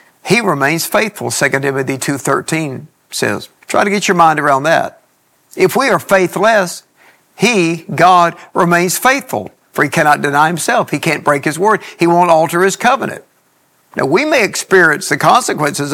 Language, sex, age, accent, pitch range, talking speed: English, male, 60-79, American, 140-190 Hz, 160 wpm